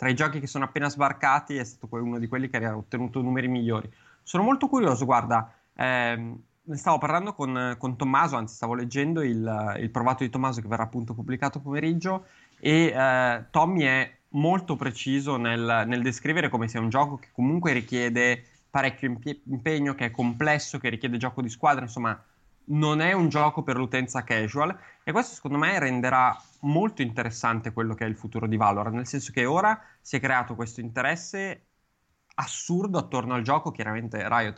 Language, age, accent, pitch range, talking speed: Italian, 20-39, native, 120-150 Hz, 180 wpm